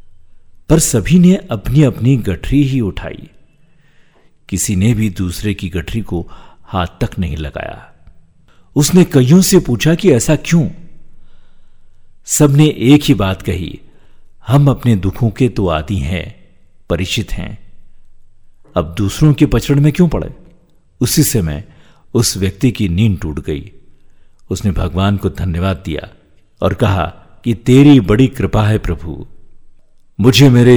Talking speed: 140 wpm